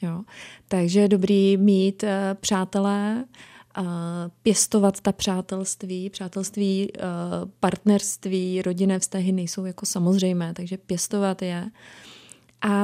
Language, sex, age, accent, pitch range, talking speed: Czech, female, 20-39, native, 190-225 Hz, 105 wpm